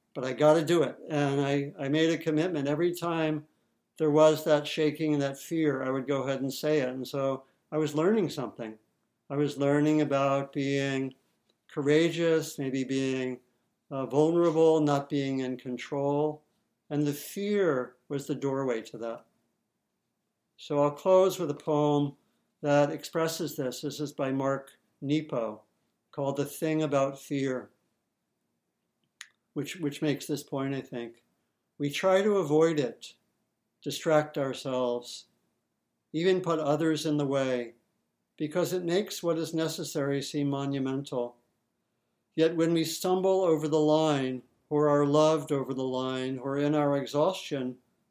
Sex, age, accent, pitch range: male, 60-79, American, 135-155 Hz